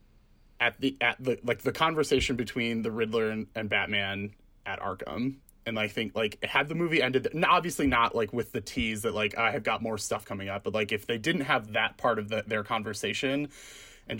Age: 30-49